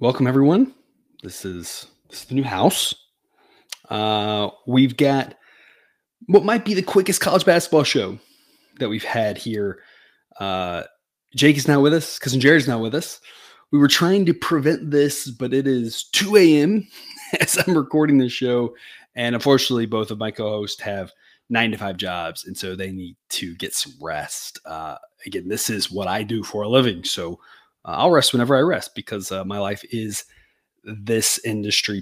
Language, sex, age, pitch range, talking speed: English, male, 20-39, 110-155 Hz, 180 wpm